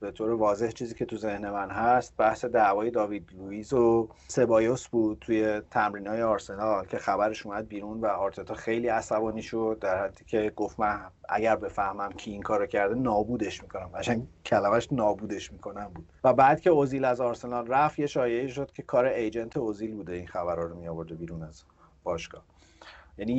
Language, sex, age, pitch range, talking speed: Persian, male, 30-49, 105-125 Hz, 175 wpm